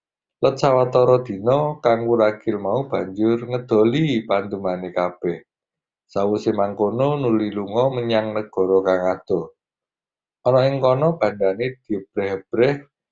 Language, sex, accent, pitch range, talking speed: Indonesian, male, native, 100-125 Hz, 95 wpm